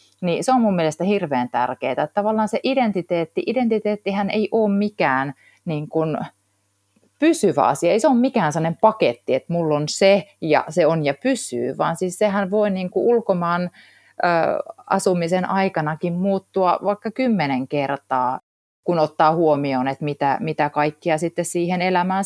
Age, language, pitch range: 30-49, Finnish, 150-200 Hz